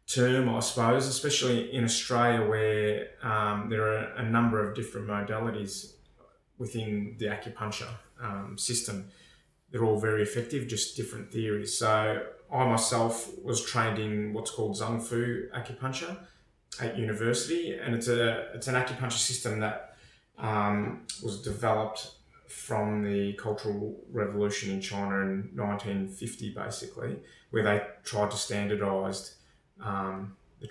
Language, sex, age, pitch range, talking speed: English, male, 20-39, 100-115 Hz, 130 wpm